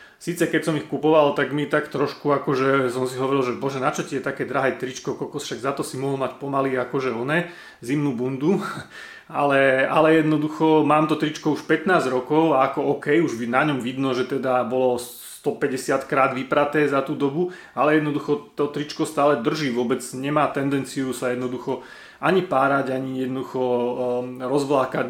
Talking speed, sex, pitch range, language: 175 wpm, male, 130-150 Hz, Slovak